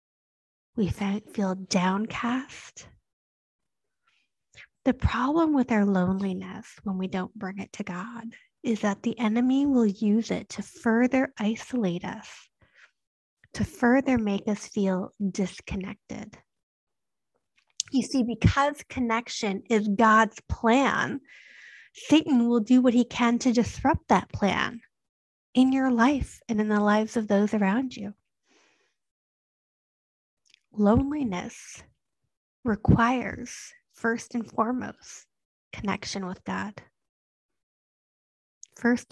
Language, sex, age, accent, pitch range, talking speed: English, female, 30-49, American, 205-245 Hz, 105 wpm